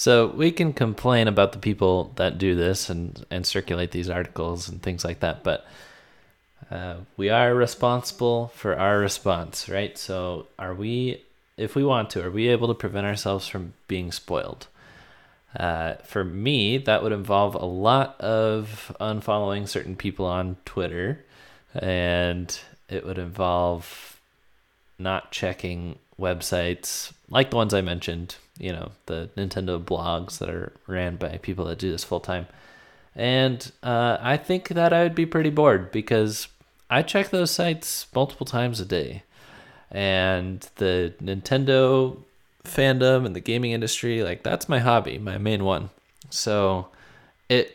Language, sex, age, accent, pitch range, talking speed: English, male, 20-39, American, 90-120 Hz, 150 wpm